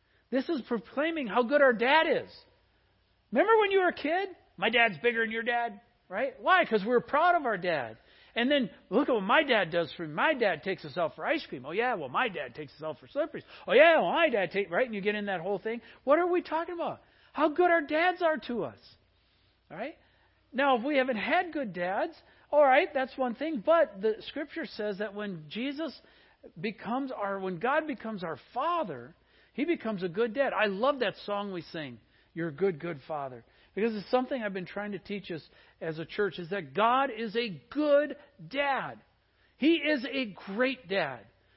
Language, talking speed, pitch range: English, 215 wpm, 190-280 Hz